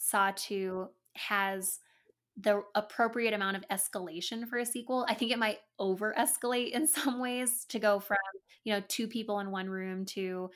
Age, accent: 10-29, American